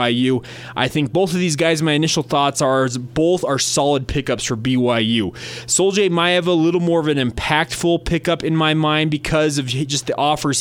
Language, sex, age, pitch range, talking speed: English, male, 20-39, 125-150 Hz, 190 wpm